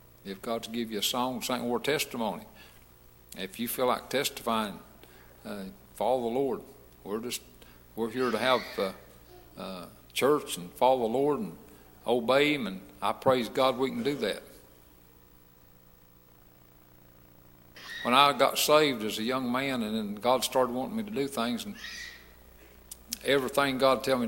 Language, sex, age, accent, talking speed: English, male, 60-79, American, 165 wpm